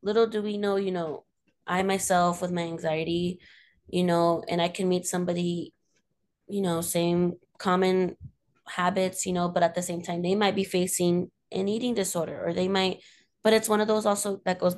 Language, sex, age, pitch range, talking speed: English, female, 20-39, 175-200 Hz, 195 wpm